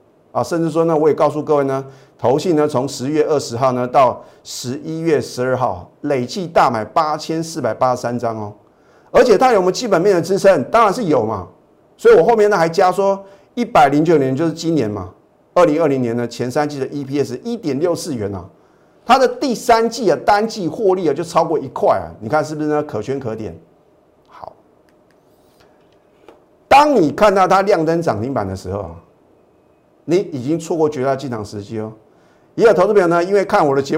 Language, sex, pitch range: Chinese, male, 130-190 Hz